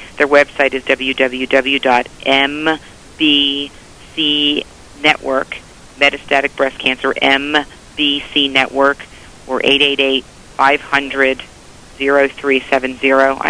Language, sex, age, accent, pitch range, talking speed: English, female, 40-59, American, 135-145 Hz, 50 wpm